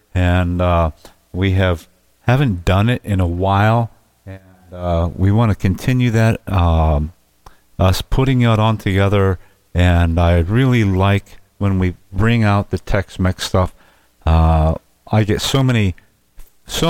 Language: English